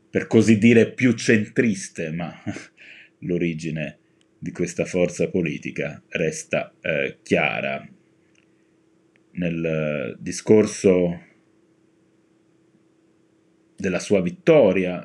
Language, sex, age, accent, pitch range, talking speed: Italian, male, 30-49, native, 90-110 Hz, 80 wpm